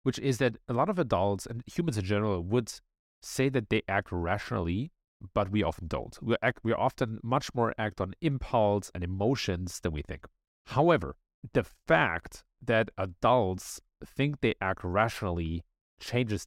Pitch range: 95-130 Hz